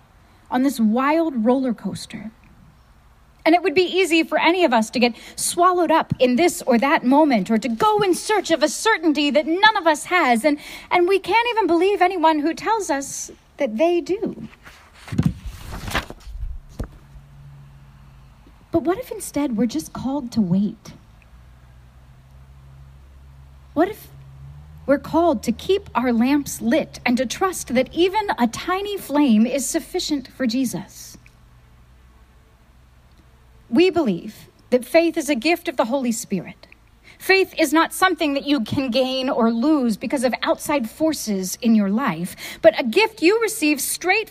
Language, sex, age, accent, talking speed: English, female, 30-49, American, 155 wpm